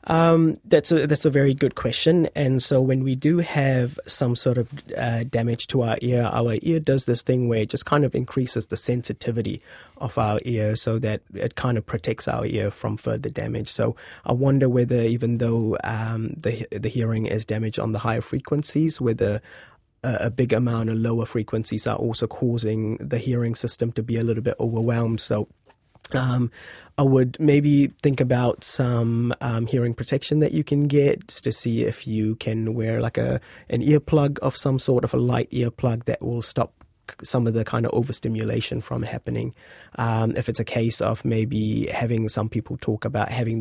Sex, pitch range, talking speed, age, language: male, 110-130 Hz, 195 wpm, 20-39, English